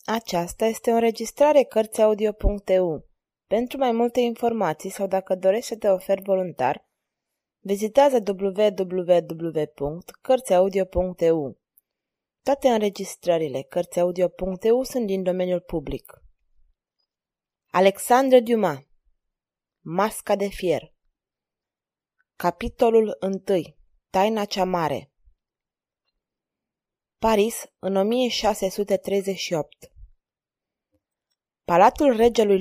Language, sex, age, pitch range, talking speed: Romanian, female, 20-39, 185-230 Hz, 75 wpm